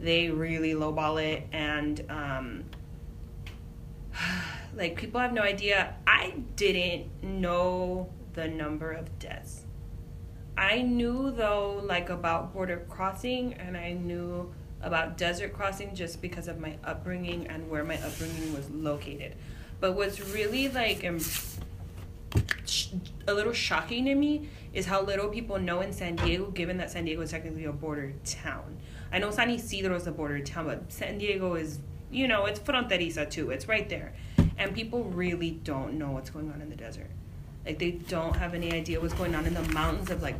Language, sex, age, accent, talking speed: English, female, 20-39, American, 170 wpm